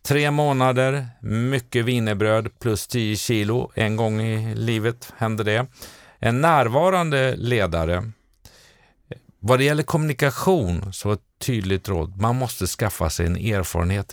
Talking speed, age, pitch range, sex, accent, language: 130 wpm, 50-69, 95-125 Hz, male, native, Swedish